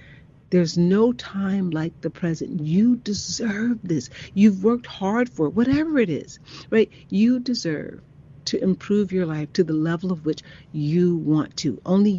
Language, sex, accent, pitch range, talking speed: English, female, American, 155-205 Hz, 160 wpm